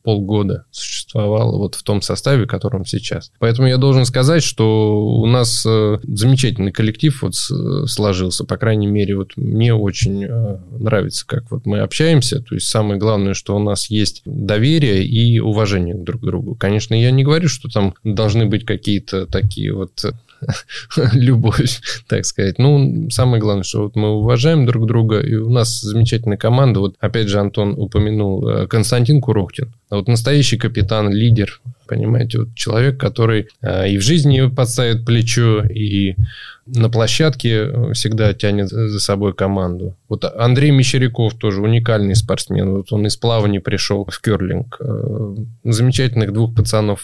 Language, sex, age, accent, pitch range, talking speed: Russian, male, 20-39, native, 100-125 Hz, 150 wpm